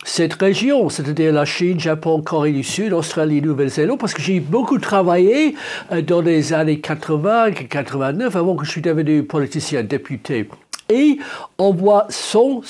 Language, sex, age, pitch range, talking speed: French, male, 60-79, 160-225 Hz, 155 wpm